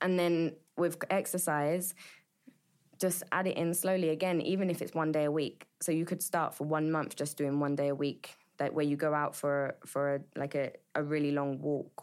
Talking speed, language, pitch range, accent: 220 wpm, English, 145-170 Hz, British